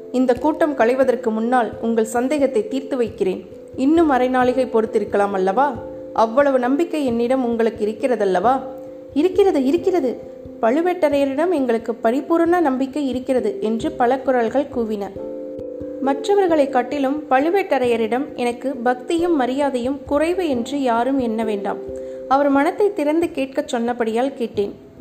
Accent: native